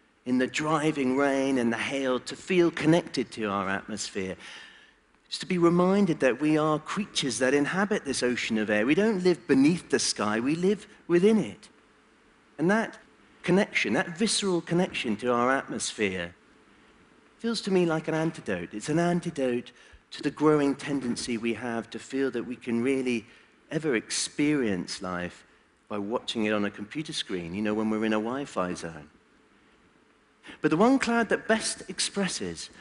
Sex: male